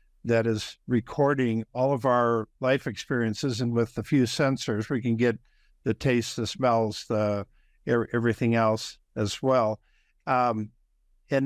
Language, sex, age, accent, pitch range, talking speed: English, male, 60-79, American, 115-135 Hz, 140 wpm